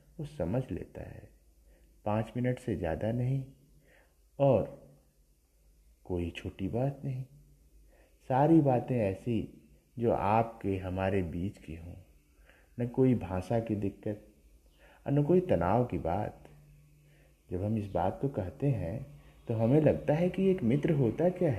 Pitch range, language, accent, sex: 90-140 Hz, Hindi, native, male